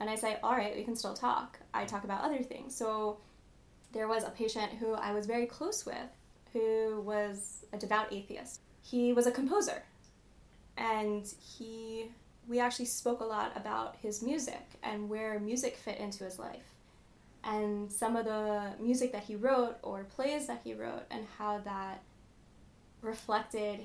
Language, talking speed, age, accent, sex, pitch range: English, 170 wpm, 20-39, American, female, 210-240 Hz